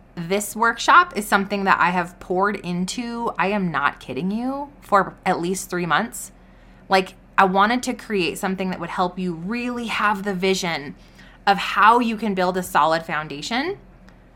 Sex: female